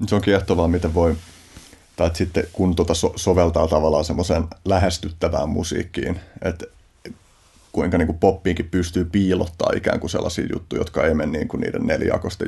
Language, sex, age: Finnish, male, 30-49